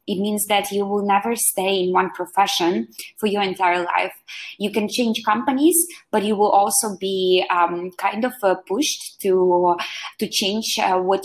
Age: 20-39